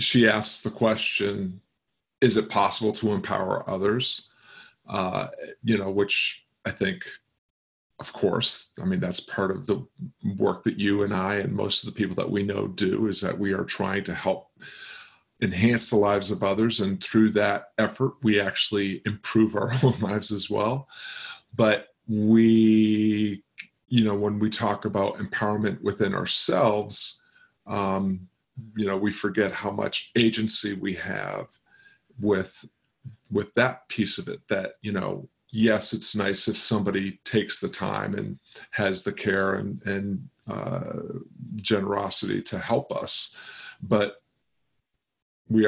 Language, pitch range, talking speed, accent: English, 100-115 Hz, 150 wpm, American